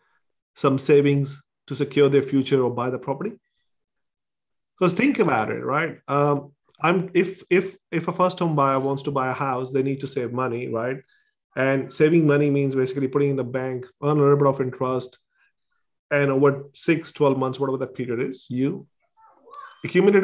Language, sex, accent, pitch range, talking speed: English, male, Indian, 130-155 Hz, 180 wpm